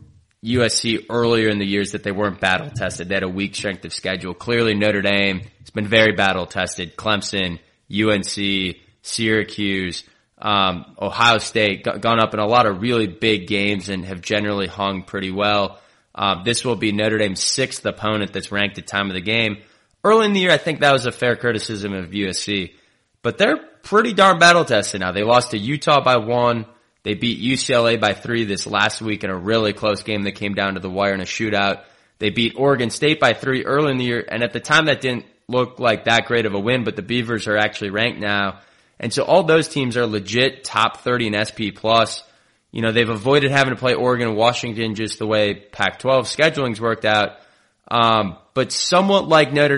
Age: 20-39